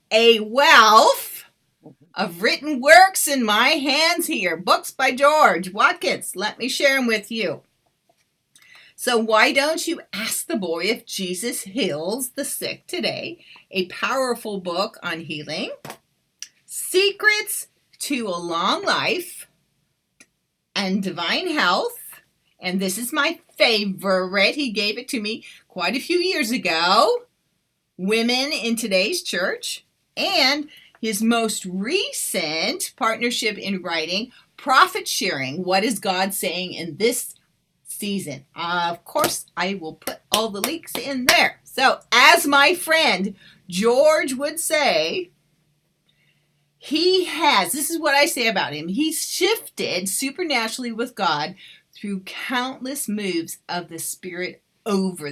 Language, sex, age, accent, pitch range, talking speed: English, female, 40-59, American, 180-290 Hz, 130 wpm